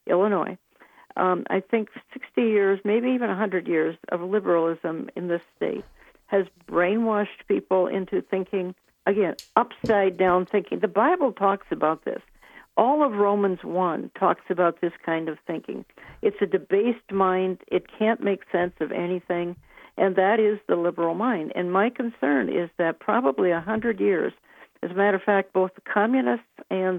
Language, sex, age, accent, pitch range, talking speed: English, female, 60-79, American, 175-205 Hz, 160 wpm